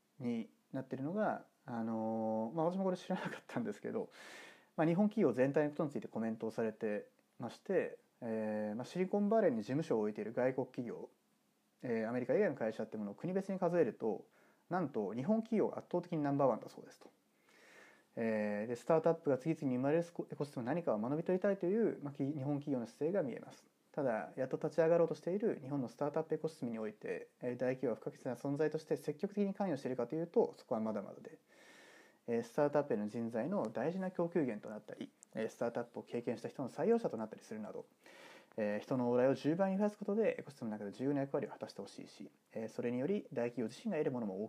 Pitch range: 115-175 Hz